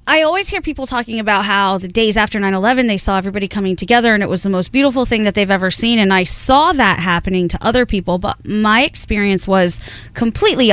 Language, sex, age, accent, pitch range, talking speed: English, female, 20-39, American, 190-240 Hz, 225 wpm